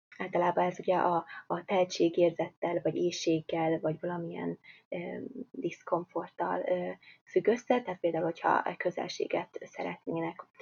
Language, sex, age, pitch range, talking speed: Hungarian, female, 20-39, 170-200 Hz, 115 wpm